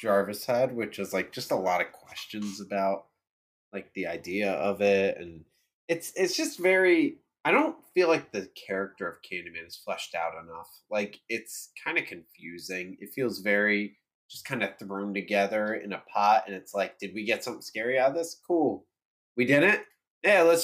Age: 20-39